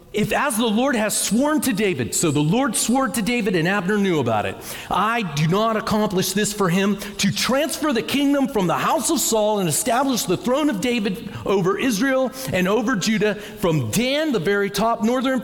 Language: English